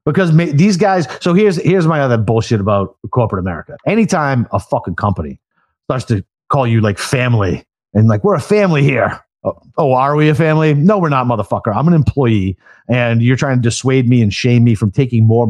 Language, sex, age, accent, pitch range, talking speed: English, male, 30-49, American, 105-140 Hz, 205 wpm